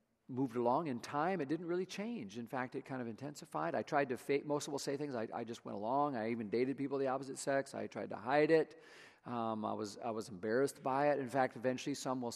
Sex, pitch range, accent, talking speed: male, 115-145 Hz, American, 255 wpm